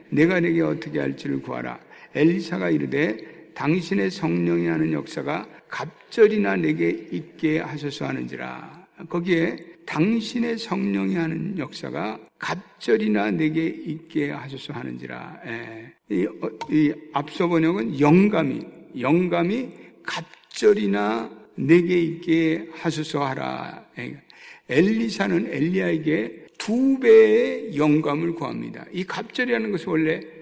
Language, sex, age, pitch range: Korean, male, 60-79, 145-220 Hz